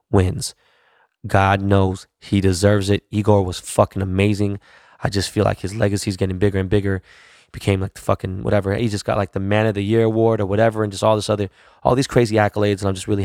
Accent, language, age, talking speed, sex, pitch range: American, English, 20-39, 235 wpm, male, 95-105 Hz